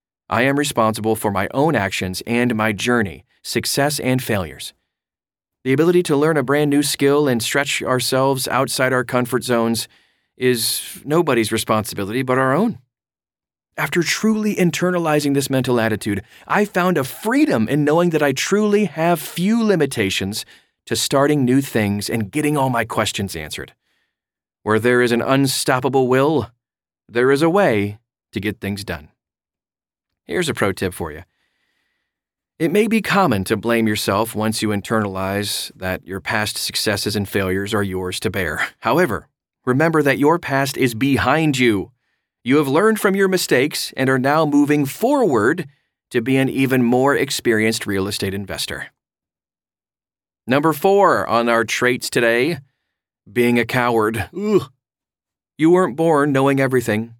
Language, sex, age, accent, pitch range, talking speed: English, male, 30-49, American, 105-145 Hz, 150 wpm